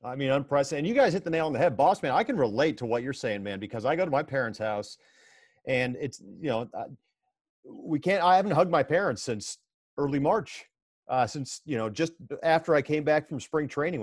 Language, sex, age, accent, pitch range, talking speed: English, male, 40-59, American, 120-155 Hz, 235 wpm